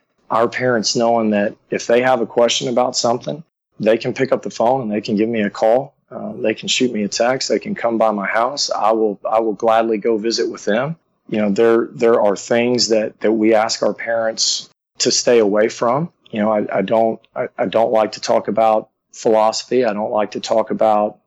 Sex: male